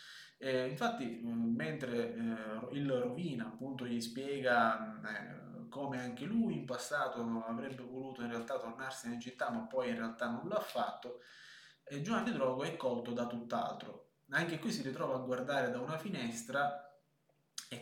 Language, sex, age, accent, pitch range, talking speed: Italian, male, 20-39, native, 120-155 Hz, 160 wpm